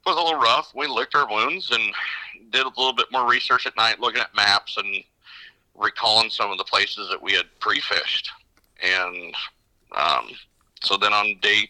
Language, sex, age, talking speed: English, male, 50-69, 185 wpm